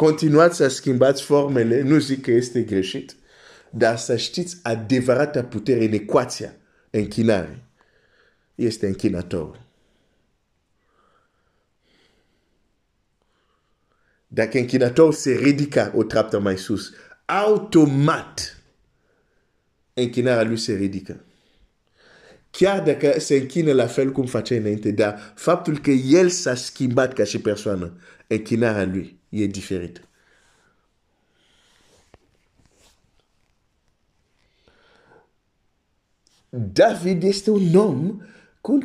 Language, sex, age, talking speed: Romanian, male, 50-69, 100 wpm